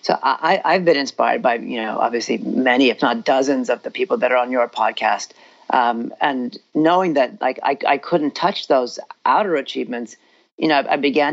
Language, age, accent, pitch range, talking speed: English, 40-59, American, 130-160 Hz, 200 wpm